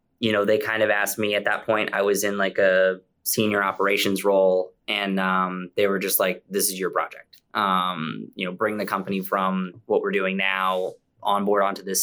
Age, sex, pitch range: 20-39, male, 95-105 Hz